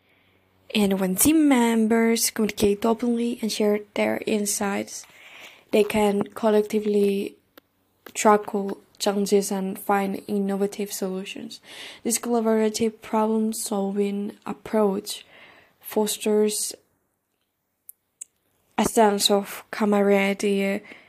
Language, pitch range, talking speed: English, 195-220 Hz, 80 wpm